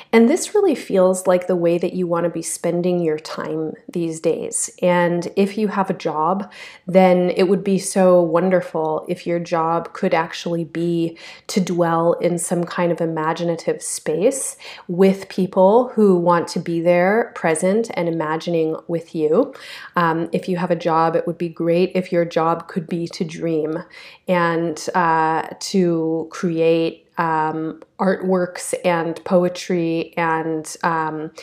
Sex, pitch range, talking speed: female, 165-185 Hz, 155 wpm